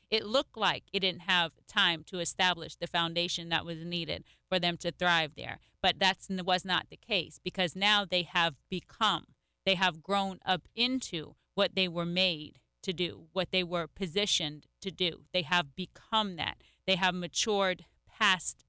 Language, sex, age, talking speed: English, female, 30-49, 175 wpm